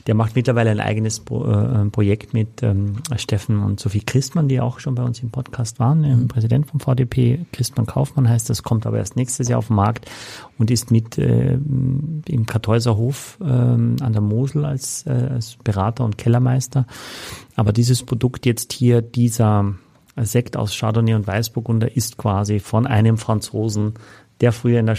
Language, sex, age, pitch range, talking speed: German, male, 40-59, 110-130 Hz, 160 wpm